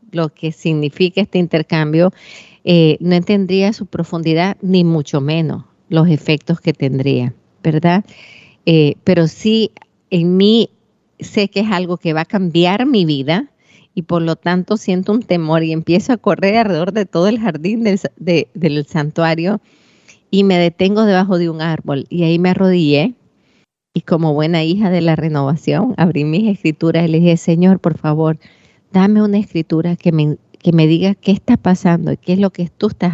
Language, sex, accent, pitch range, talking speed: Spanish, female, American, 160-190 Hz, 175 wpm